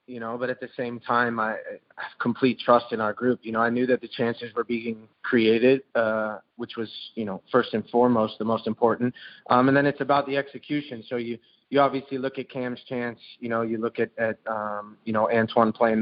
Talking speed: 230 wpm